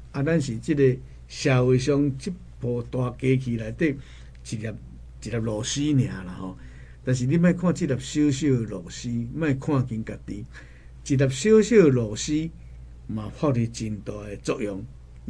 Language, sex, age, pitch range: Chinese, male, 60-79, 90-140 Hz